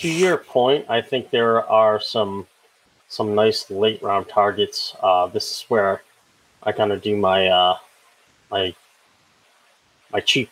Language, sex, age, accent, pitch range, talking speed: English, male, 20-39, American, 100-115 Hz, 150 wpm